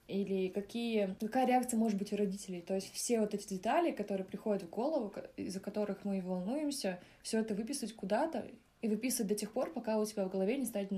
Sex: female